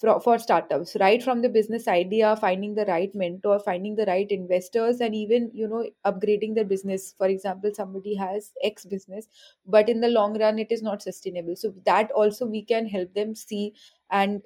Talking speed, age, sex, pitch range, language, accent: 190 wpm, 20-39, female, 195-235 Hz, English, Indian